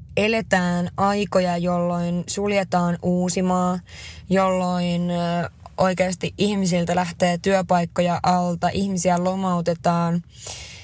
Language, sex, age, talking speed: Finnish, female, 20-39, 70 wpm